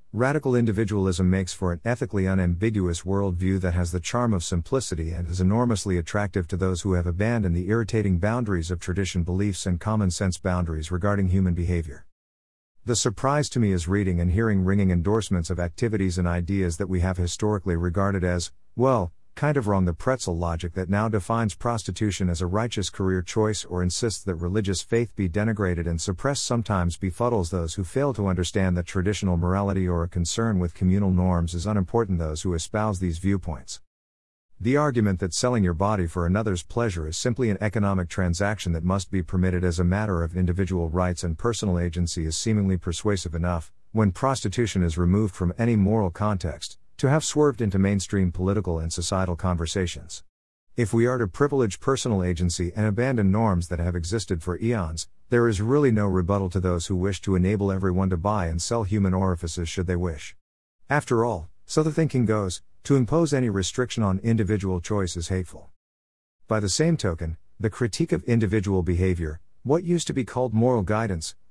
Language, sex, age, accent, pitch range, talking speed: English, male, 50-69, American, 90-110 Hz, 185 wpm